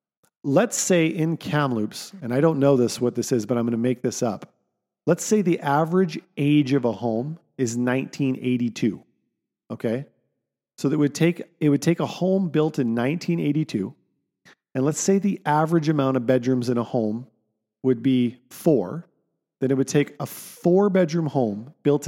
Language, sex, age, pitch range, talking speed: English, male, 40-59, 125-165 Hz, 175 wpm